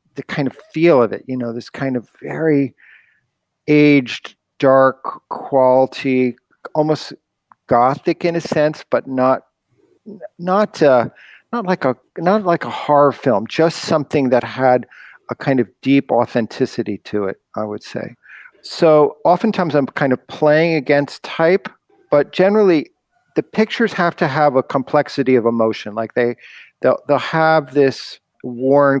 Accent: American